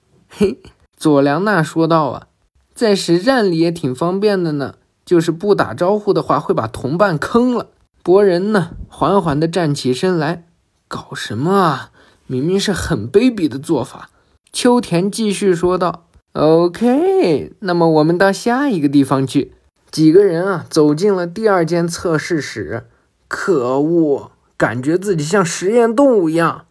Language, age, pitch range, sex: Chinese, 20-39, 155-205 Hz, male